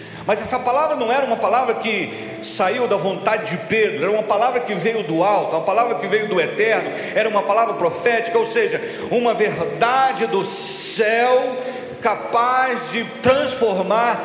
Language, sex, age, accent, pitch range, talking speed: Portuguese, male, 50-69, Brazilian, 220-285 Hz, 165 wpm